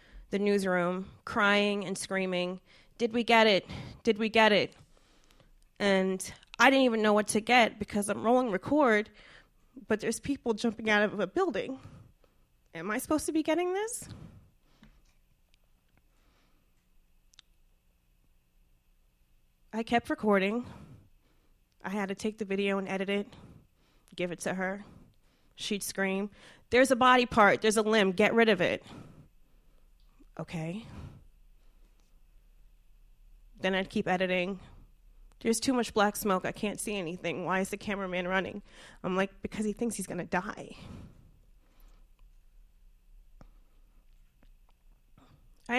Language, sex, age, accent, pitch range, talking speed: English, female, 20-39, American, 170-225 Hz, 130 wpm